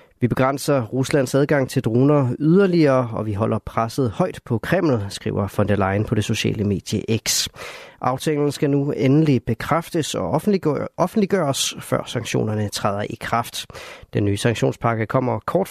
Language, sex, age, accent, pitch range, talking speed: Danish, male, 30-49, native, 110-145 Hz, 155 wpm